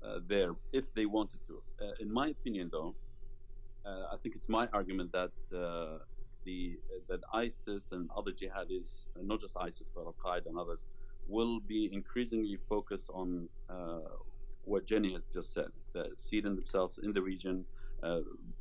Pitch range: 95-115 Hz